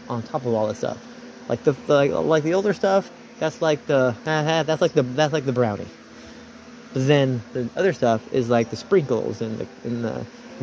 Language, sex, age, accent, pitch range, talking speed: English, male, 30-49, American, 120-160 Hz, 220 wpm